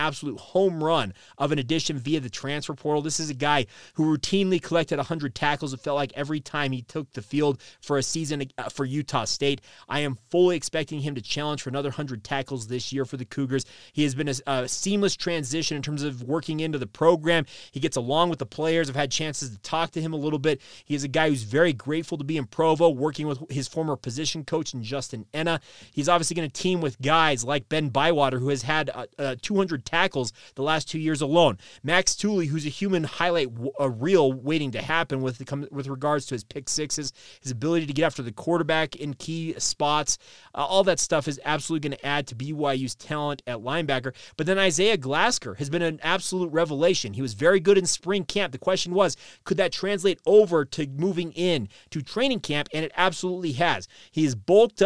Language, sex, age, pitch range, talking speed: English, male, 30-49, 140-170 Hz, 220 wpm